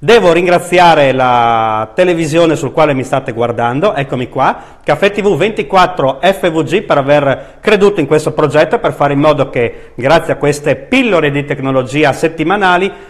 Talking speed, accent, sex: 140 wpm, native, male